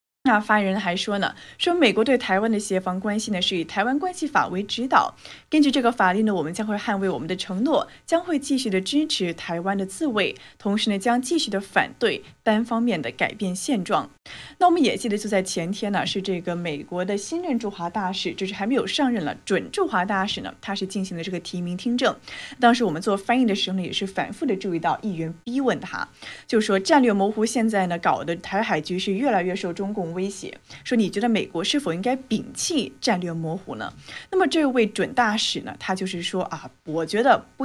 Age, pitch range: 30-49, 185-240 Hz